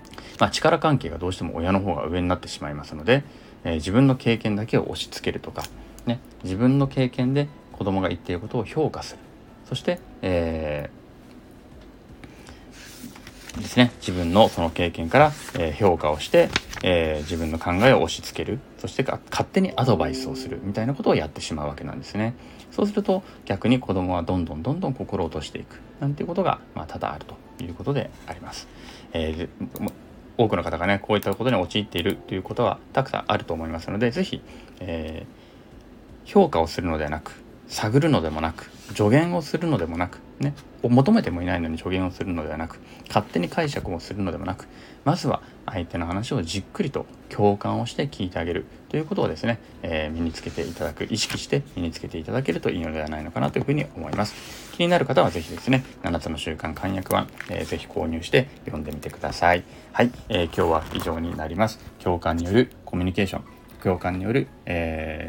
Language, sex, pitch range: Japanese, male, 85-120 Hz